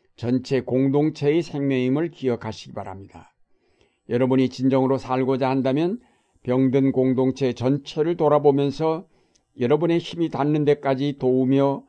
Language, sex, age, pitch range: Korean, male, 60-79, 120-140 Hz